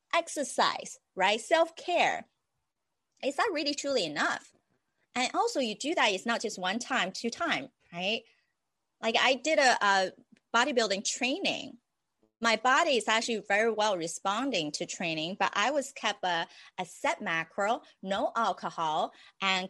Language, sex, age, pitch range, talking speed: English, female, 30-49, 190-275 Hz, 145 wpm